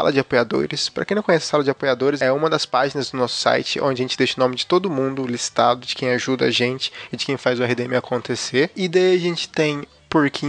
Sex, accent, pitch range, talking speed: male, Brazilian, 130-165 Hz, 265 wpm